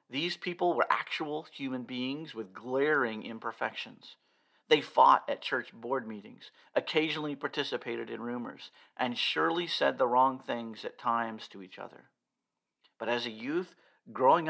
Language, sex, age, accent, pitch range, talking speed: English, male, 50-69, American, 110-145 Hz, 145 wpm